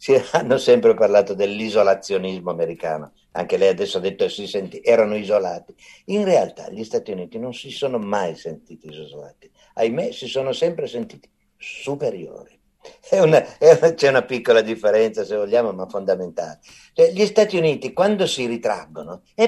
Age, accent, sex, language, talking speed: 50-69, native, male, Italian, 140 wpm